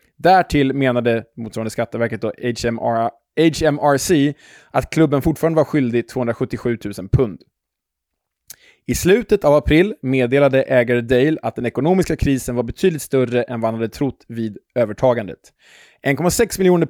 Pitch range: 115-155 Hz